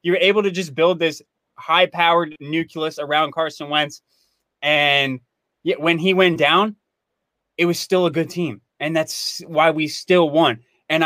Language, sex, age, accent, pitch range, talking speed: English, male, 20-39, American, 145-170 Hz, 170 wpm